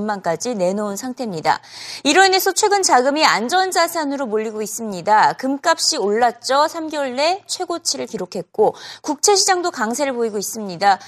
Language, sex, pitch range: Korean, female, 225-340 Hz